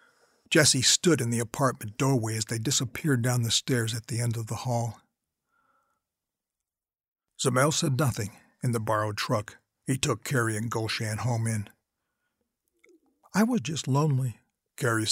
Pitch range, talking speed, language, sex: 115-145 Hz, 145 wpm, English, male